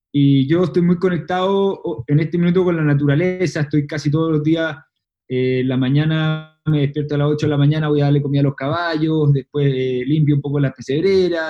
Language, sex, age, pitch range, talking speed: Spanish, male, 20-39, 140-170 Hz, 215 wpm